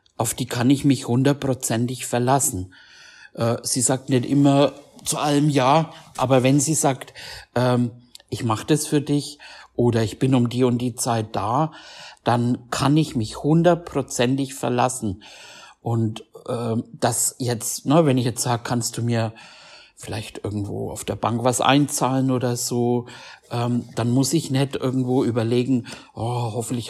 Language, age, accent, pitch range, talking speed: German, 60-79, German, 120-145 Hz, 145 wpm